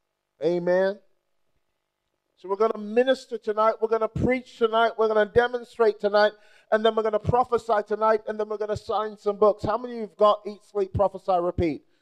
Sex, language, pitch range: male, English, 185-225 Hz